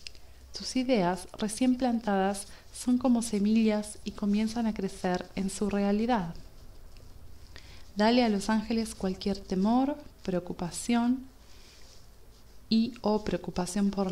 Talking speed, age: 105 wpm, 30-49